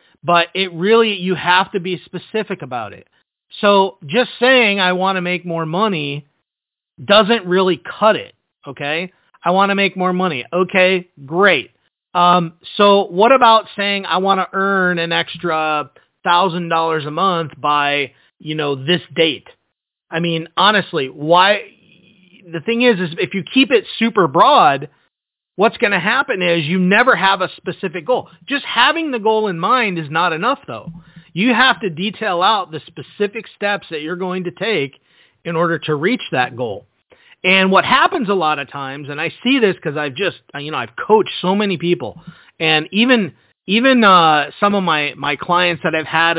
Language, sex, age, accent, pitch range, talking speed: English, male, 30-49, American, 165-205 Hz, 180 wpm